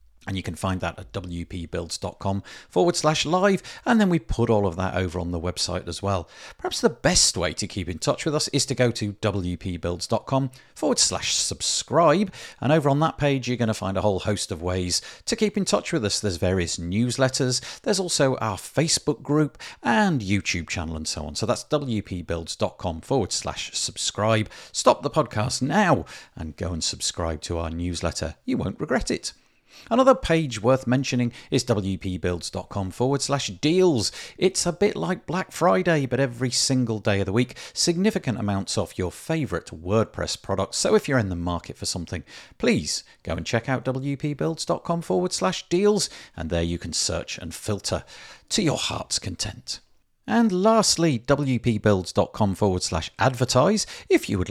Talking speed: 180 wpm